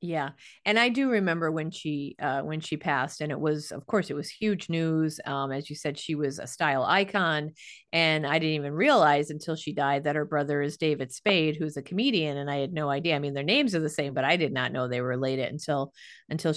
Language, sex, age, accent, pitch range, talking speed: English, female, 30-49, American, 150-185 Hz, 245 wpm